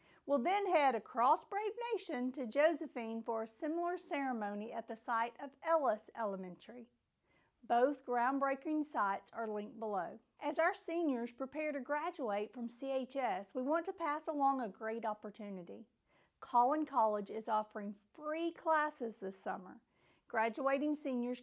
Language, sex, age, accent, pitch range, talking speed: English, female, 50-69, American, 225-305 Hz, 140 wpm